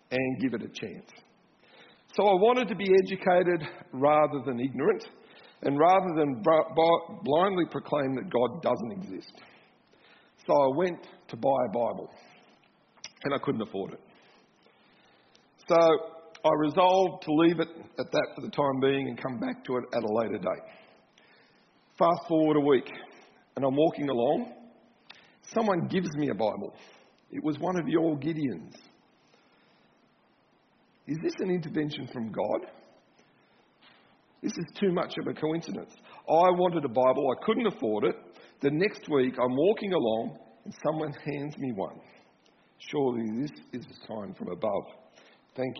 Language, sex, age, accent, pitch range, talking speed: English, male, 50-69, Australian, 135-180 Hz, 150 wpm